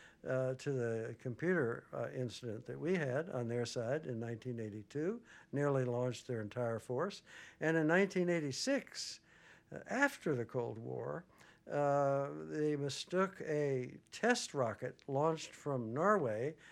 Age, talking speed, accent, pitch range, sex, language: 60-79, 130 wpm, American, 125-170 Hz, male, English